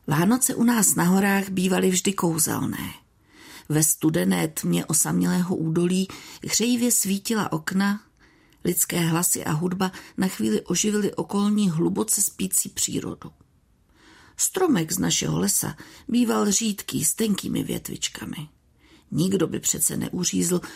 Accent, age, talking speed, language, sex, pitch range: native, 50-69, 115 wpm, Czech, female, 170-215 Hz